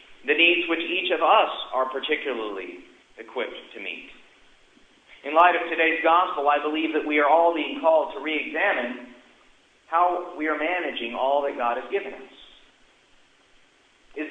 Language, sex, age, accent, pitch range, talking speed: English, male, 40-59, American, 150-200 Hz, 155 wpm